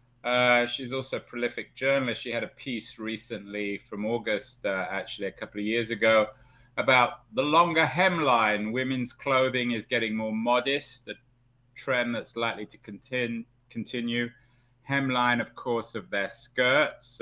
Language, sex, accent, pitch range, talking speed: English, male, British, 105-125 Hz, 145 wpm